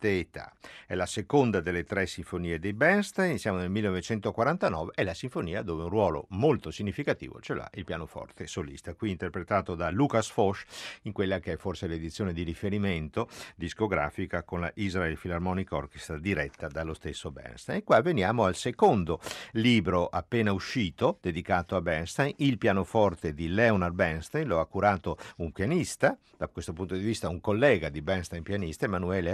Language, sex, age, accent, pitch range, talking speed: Italian, male, 50-69, native, 90-115 Hz, 165 wpm